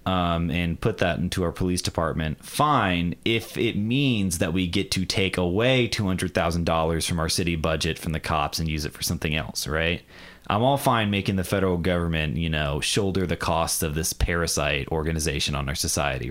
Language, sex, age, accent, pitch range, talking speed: English, male, 30-49, American, 90-110 Hz, 200 wpm